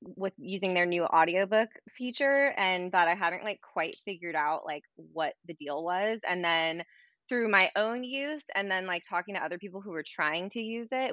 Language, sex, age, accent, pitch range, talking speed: English, female, 20-39, American, 165-205 Hz, 205 wpm